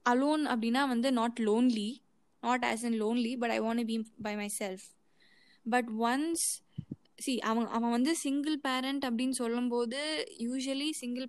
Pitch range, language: 220-255 Hz, Tamil